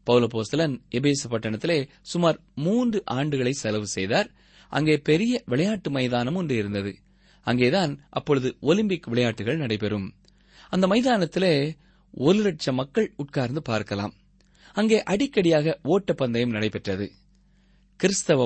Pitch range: 120-185 Hz